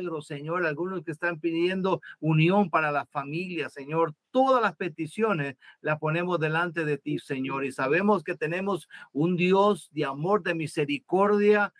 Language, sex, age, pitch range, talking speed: Spanish, male, 50-69, 160-205 Hz, 145 wpm